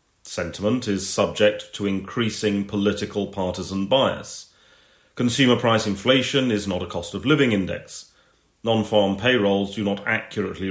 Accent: British